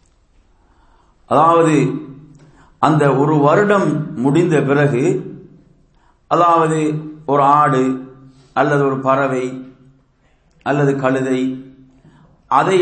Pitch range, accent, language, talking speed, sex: 135-165 Hz, Indian, English, 70 wpm, male